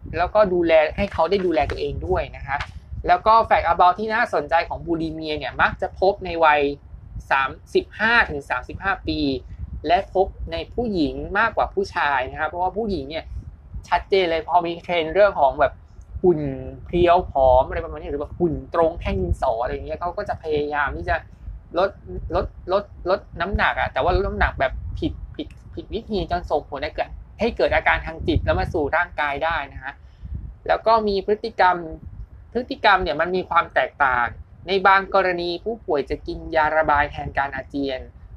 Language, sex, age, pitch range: Thai, male, 20-39, 150-205 Hz